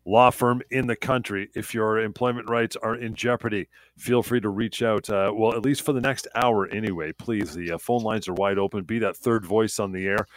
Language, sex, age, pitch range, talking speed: English, male, 40-59, 90-115 Hz, 235 wpm